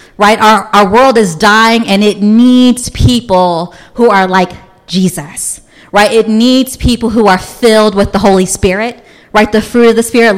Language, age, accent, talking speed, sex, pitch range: English, 30-49, American, 180 wpm, female, 195-245 Hz